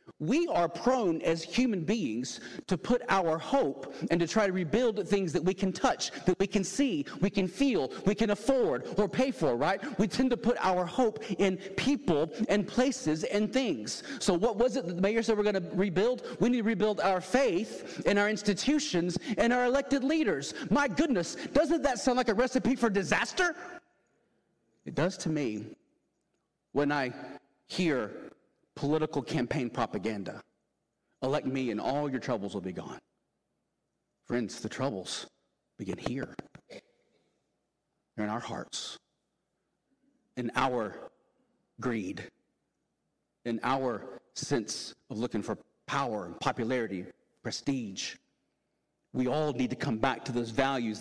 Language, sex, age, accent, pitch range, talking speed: English, male, 40-59, American, 150-250 Hz, 155 wpm